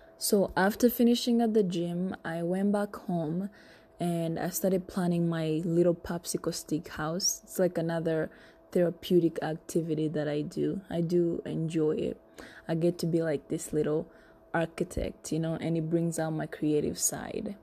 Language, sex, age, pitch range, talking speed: English, female, 20-39, 165-195 Hz, 165 wpm